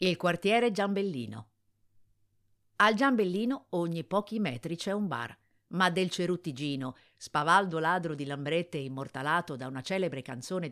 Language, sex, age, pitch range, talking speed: Italian, female, 50-69, 140-190 Hz, 130 wpm